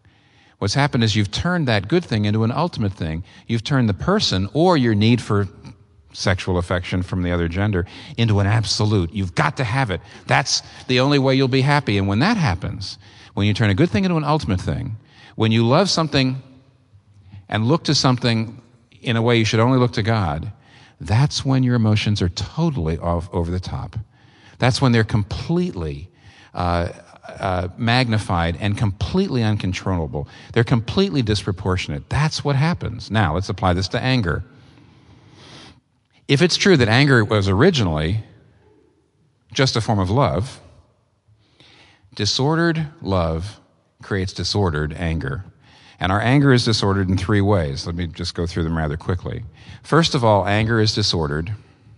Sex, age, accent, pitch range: male, 50-69, American, 95-130 Hz